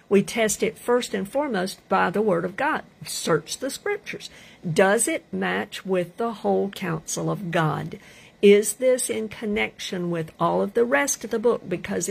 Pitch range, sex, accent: 175-225 Hz, female, American